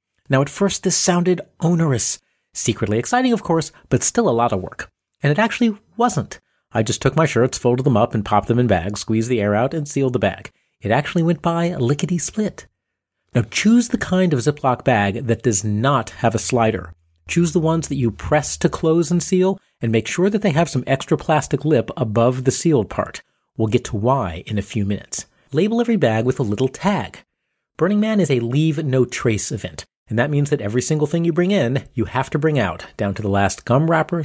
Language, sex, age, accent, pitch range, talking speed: English, male, 40-59, American, 110-170 Hz, 220 wpm